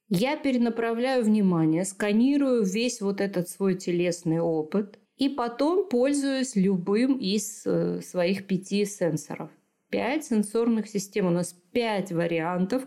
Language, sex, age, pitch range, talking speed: Russian, female, 30-49, 175-230 Hz, 115 wpm